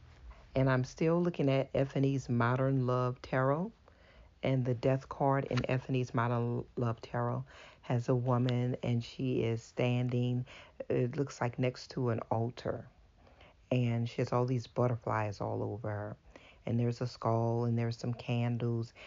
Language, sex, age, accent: English, female, 40-59, American